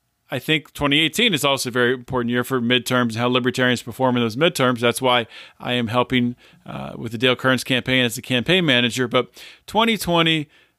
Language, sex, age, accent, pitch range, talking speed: English, male, 40-59, American, 125-170 Hz, 195 wpm